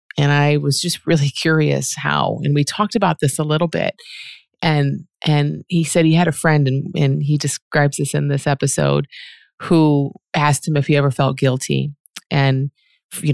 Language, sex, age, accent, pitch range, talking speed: English, female, 30-49, American, 145-175 Hz, 185 wpm